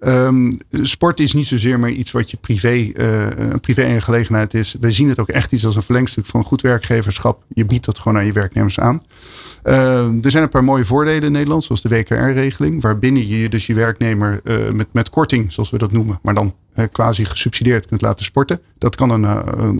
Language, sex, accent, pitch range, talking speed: Dutch, male, Dutch, 115-135 Hz, 215 wpm